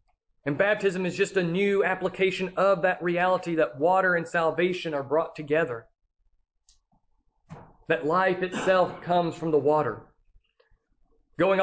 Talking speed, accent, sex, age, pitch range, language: 130 wpm, American, male, 40-59, 170-200 Hz, English